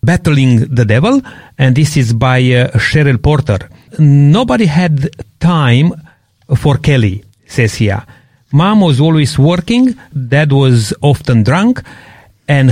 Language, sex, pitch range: English, male, 120-155 Hz